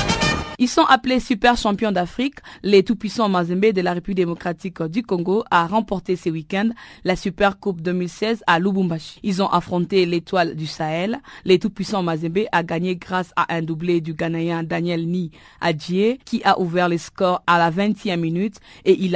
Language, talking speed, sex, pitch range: French, 170 wpm, female, 175-205 Hz